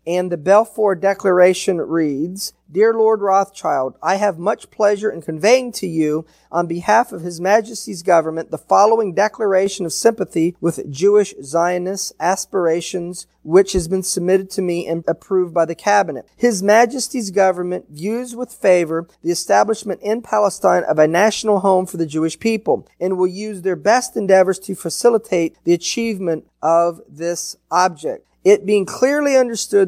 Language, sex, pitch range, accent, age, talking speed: English, male, 175-210 Hz, American, 40-59, 155 wpm